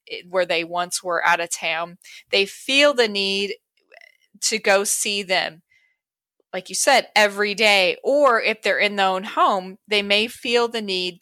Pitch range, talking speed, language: 190-245 Hz, 170 wpm, English